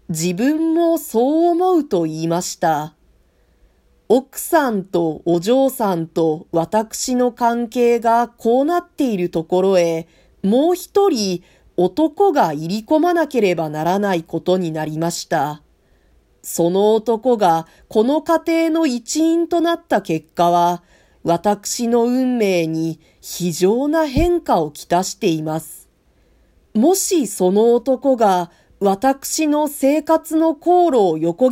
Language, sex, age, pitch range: Japanese, female, 40-59, 175-275 Hz